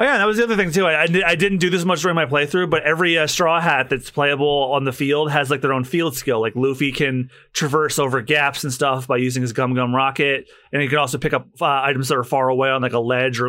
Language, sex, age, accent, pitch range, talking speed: English, male, 30-49, American, 130-165 Hz, 285 wpm